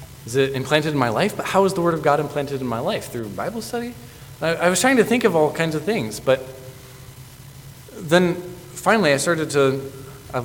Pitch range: 130-155 Hz